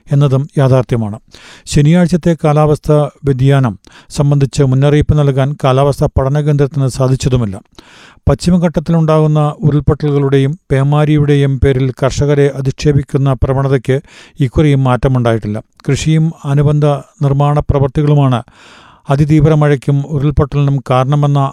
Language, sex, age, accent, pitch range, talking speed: Malayalam, male, 40-59, native, 135-150 Hz, 80 wpm